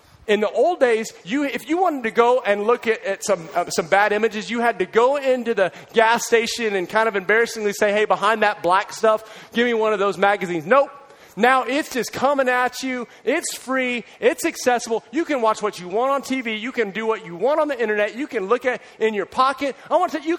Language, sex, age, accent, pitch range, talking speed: English, male, 30-49, American, 205-315 Hz, 245 wpm